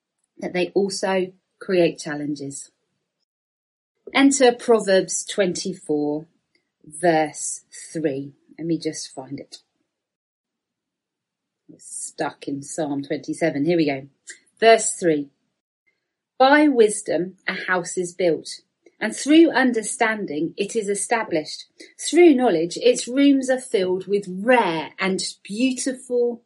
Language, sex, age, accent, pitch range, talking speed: English, female, 40-59, British, 165-250 Hz, 105 wpm